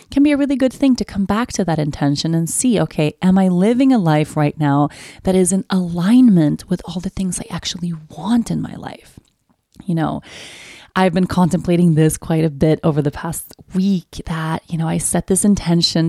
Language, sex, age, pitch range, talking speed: English, female, 30-49, 160-215 Hz, 210 wpm